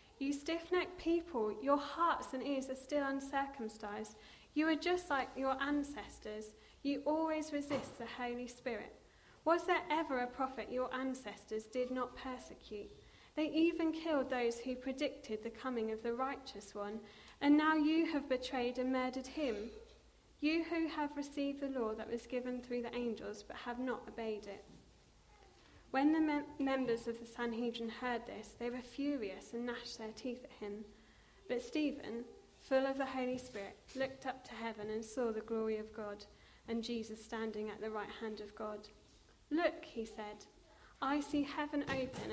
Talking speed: 170 wpm